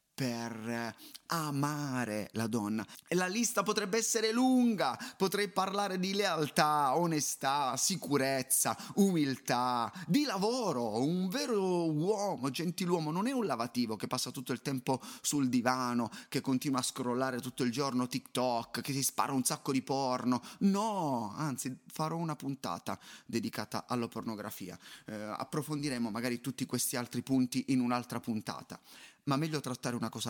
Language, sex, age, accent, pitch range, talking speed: Italian, male, 30-49, native, 120-190 Hz, 140 wpm